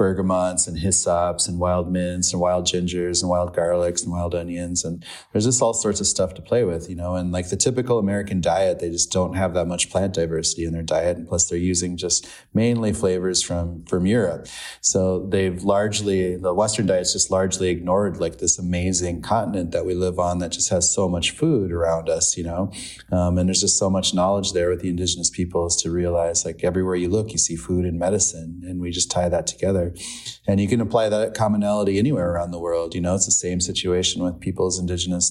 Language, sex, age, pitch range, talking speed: English, male, 20-39, 85-95 Hz, 220 wpm